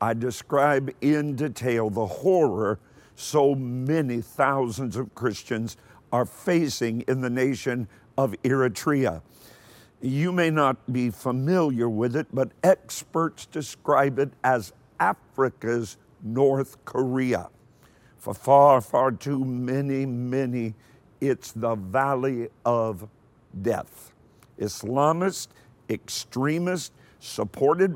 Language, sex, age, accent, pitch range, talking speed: English, male, 50-69, American, 120-145 Hz, 100 wpm